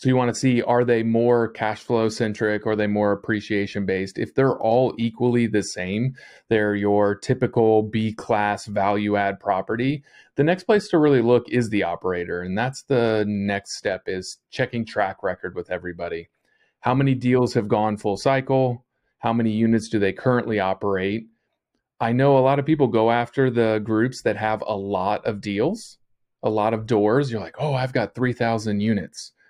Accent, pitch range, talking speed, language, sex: American, 105-125 Hz, 185 wpm, English, male